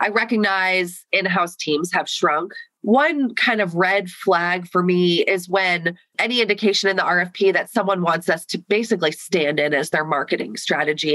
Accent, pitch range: American, 175-210 Hz